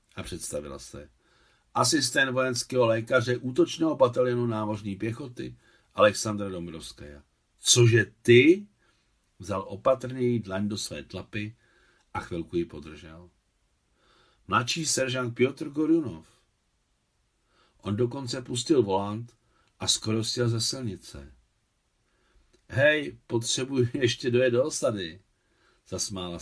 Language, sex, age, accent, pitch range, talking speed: Czech, male, 60-79, native, 100-125 Hz, 100 wpm